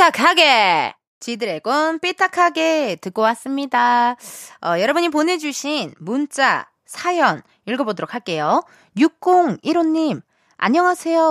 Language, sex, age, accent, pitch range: Korean, female, 20-39, native, 210-315 Hz